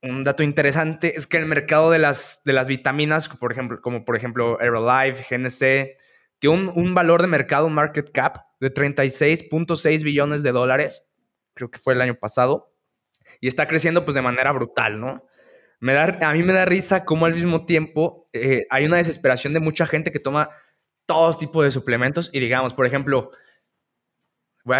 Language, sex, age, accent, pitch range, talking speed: Spanish, male, 20-39, Mexican, 130-160 Hz, 185 wpm